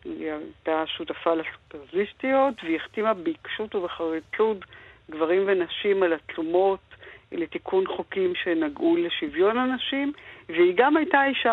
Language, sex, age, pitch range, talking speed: Hebrew, female, 50-69, 170-255 Hz, 110 wpm